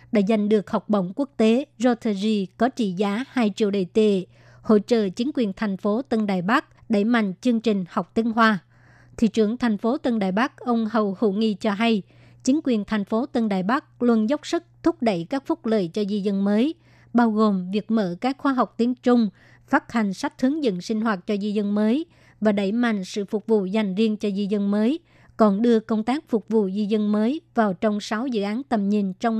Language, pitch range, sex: Vietnamese, 205-235 Hz, male